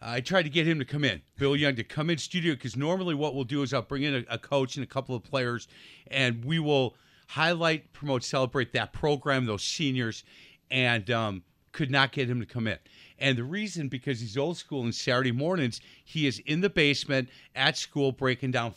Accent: American